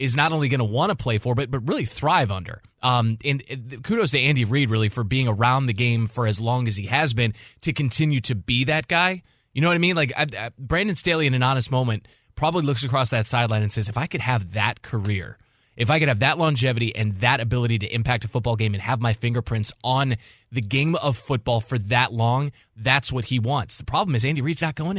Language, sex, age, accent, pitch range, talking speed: English, male, 20-39, American, 120-150 Hz, 250 wpm